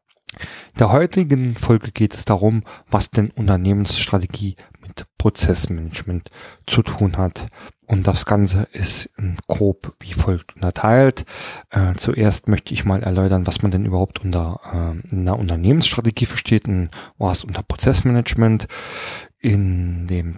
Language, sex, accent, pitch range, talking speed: German, male, German, 95-115 Hz, 130 wpm